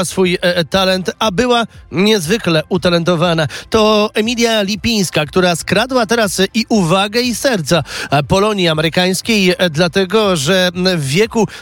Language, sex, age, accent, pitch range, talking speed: Polish, male, 30-49, native, 180-210 Hz, 115 wpm